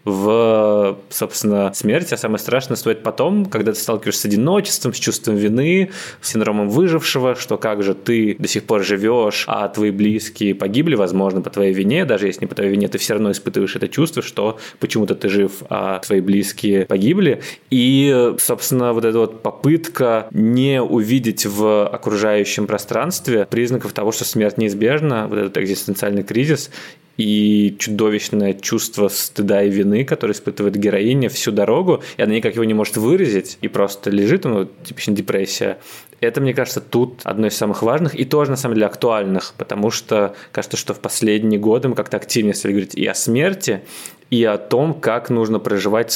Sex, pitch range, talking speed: male, 100-120 Hz, 175 wpm